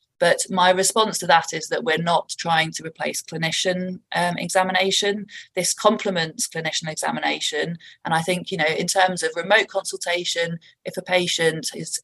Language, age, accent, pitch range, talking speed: English, 20-39, British, 160-190 Hz, 165 wpm